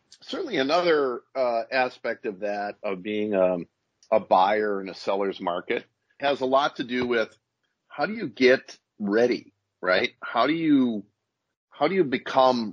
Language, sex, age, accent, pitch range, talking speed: English, male, 40-59, American, 105-140 Hz, 150 wpm